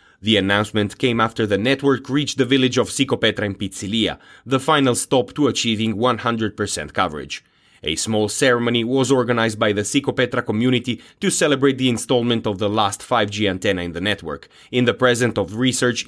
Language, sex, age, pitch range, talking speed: English, male, 30-49, 110-130 Hz, 170 wpm